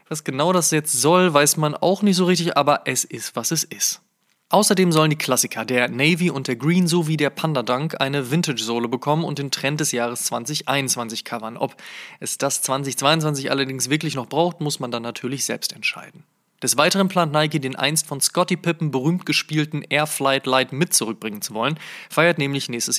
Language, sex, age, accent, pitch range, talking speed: German, male, 20-39, German, 130-170 Hz, 195 wpm